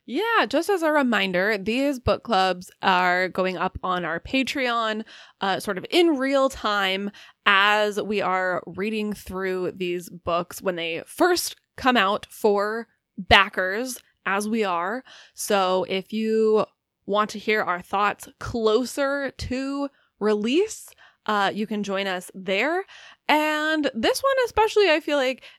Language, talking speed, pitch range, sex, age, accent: English, 145 wpm, 190-250 Hz, female, 20-39, American